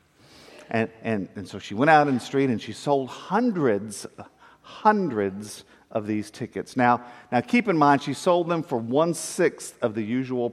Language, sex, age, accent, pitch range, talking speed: English, male, 50-69, American, 110-150 Hz, 175 wpm